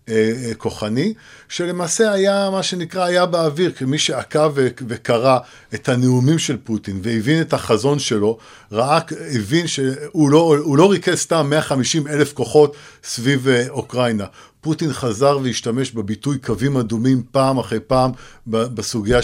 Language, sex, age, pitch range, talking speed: Hebrew, male, 50-69, 120-150 Hz, 125 wpm